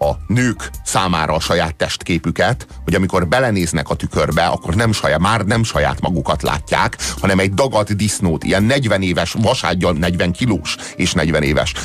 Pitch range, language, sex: 90-120 Hz, Hungarian, male